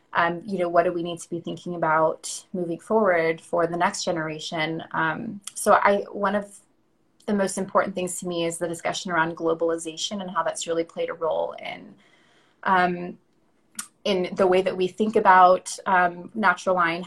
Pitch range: 175-200 Hz